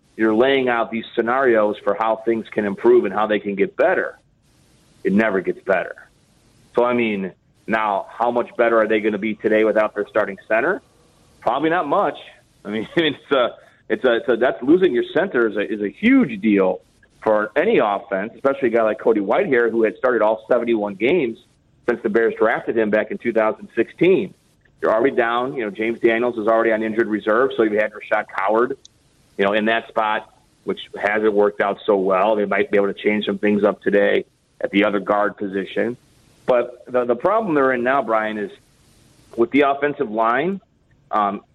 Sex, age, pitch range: male, 40-59, 105-125 Hz